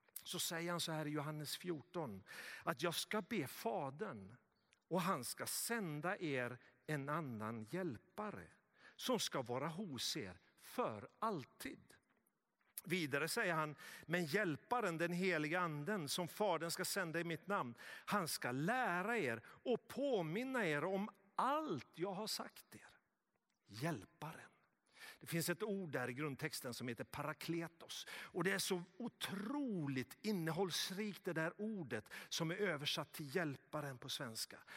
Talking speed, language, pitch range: 145 wpm, Swedish, 155-230 Hz